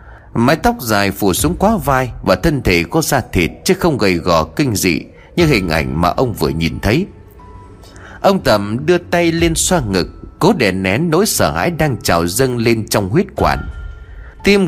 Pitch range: 95-155 Hz